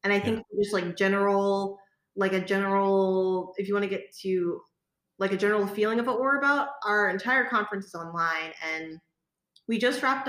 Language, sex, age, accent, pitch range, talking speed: English, female, 20-39, American, 175-210 Hz, 185 wpm